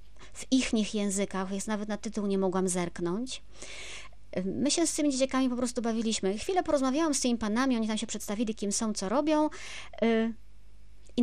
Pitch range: 185-255 Hz